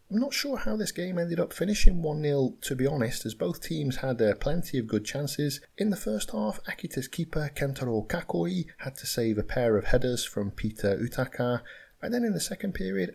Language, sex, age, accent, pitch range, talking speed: English, male, 30-49, British, 110-155 Hz, 210 wpm